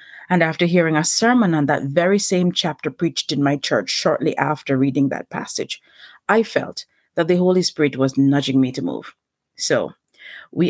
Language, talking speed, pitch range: English, 180 wpm, 145-190 Hz